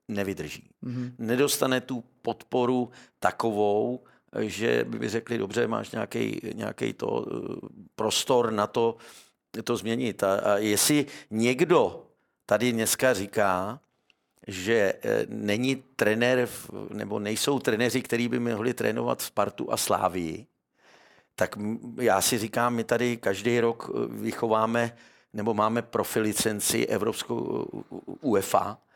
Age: 50-69